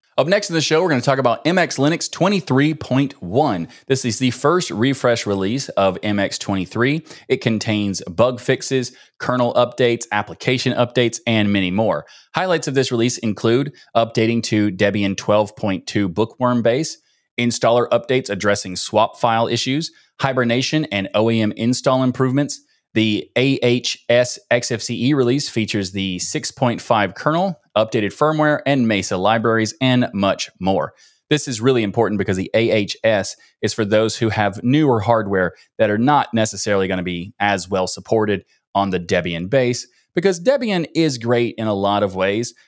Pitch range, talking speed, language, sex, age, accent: 100-135 Hz, 150 wpm, English, male, 30-49, American